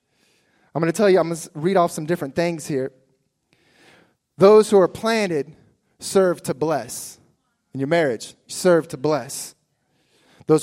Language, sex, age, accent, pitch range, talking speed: English, male, 20-39, American, 145-210 Hz, 160 wpm